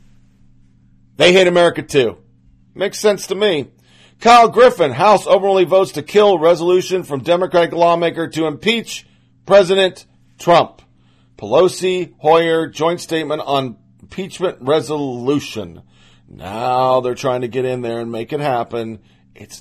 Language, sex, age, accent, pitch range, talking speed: English, male, 40-59, American, 115-185 Hz, 130 wpm